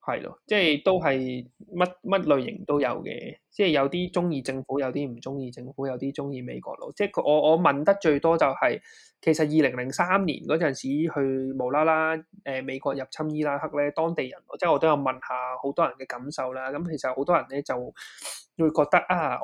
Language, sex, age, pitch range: Chinese, male, 20-39, 130-165 Hz